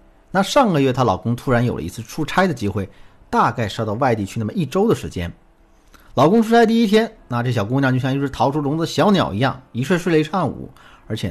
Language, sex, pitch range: Chinese, male, 105-160 Hz